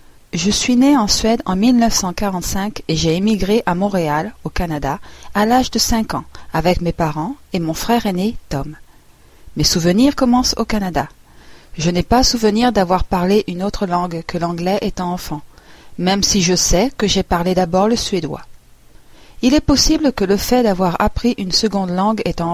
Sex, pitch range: female, 170-225 Hz